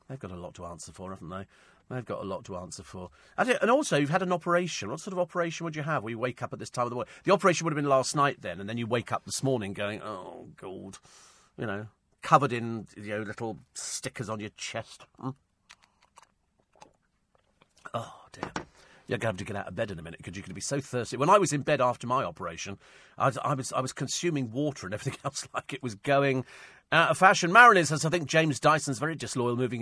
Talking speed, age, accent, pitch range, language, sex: 245 wpm, 40-59, British, 115-170 Hz, English, male